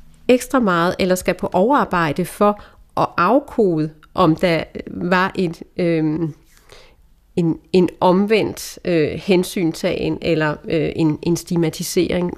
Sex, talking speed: female, 115 wpm